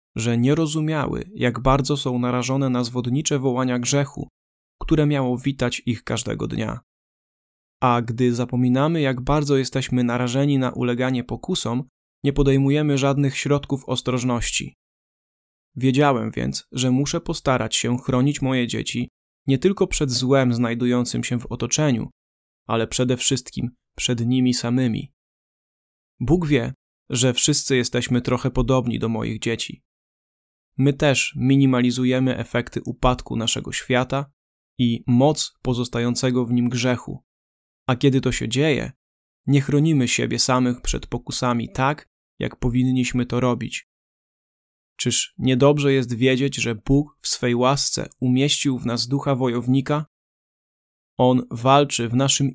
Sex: male